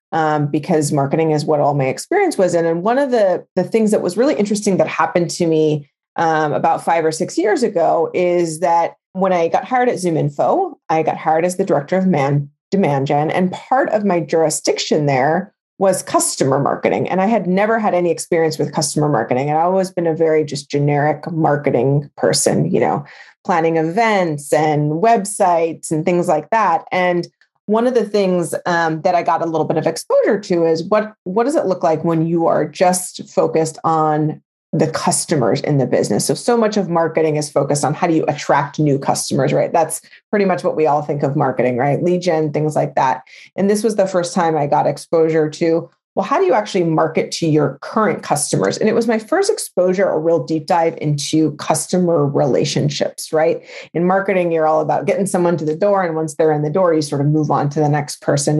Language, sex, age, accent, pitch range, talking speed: English, female, 30-49, American, 155-195 Hz, 215 wpm